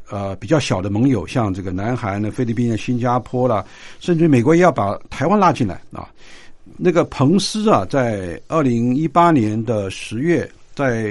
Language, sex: Chinese, male